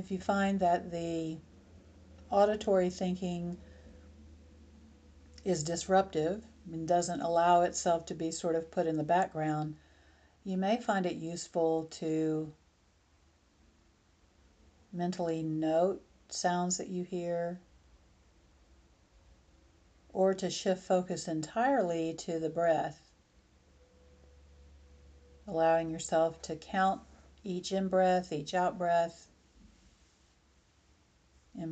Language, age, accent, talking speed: English, 50-69, American, 95 wpm